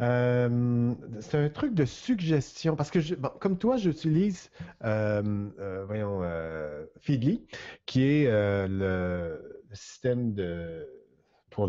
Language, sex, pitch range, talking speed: French, male, 110-160 Hz, 130 wpm